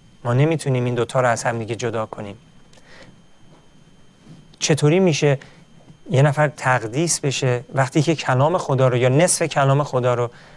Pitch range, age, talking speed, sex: 125-155 Hz, 40-59, 150 wpm, male